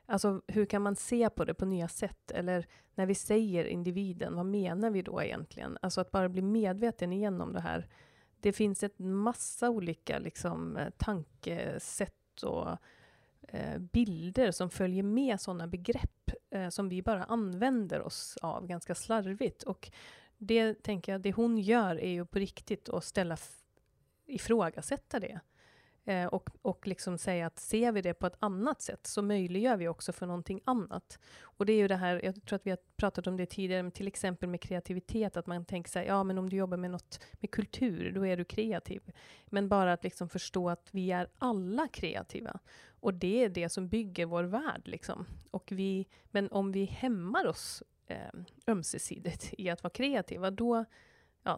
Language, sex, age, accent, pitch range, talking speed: Swedish, female, 30-49, native, 180-215 Hz, 185 wpm